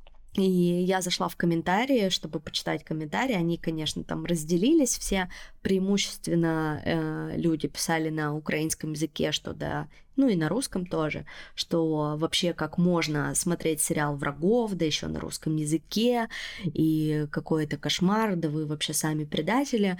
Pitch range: 160-195 Hz